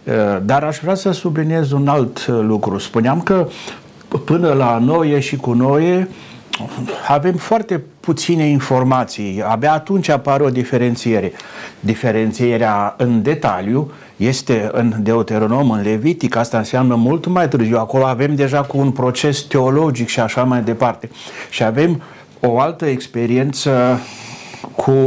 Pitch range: 115-145 Hz